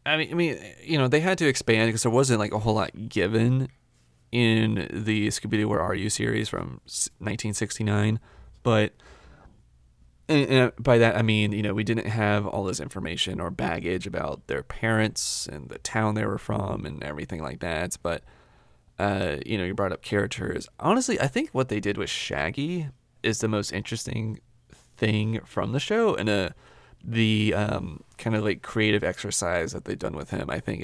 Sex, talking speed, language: male, 190 wpm, English